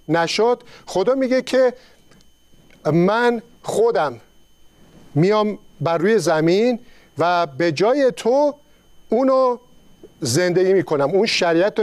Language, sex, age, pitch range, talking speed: Persian, male, 50-69, 170-225 Hz, 90 wpm